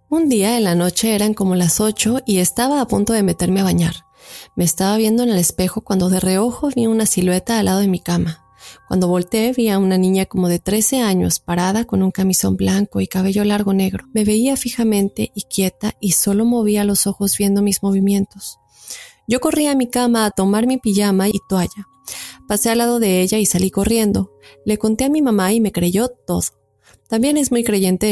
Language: Spanish